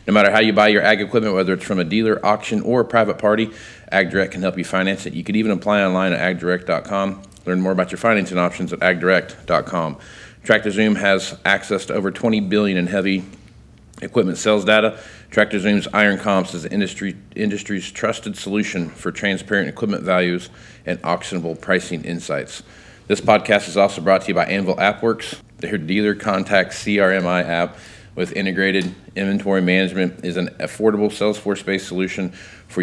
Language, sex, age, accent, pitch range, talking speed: English, male, 40-59, American, 95-105 Hz, 170 wpm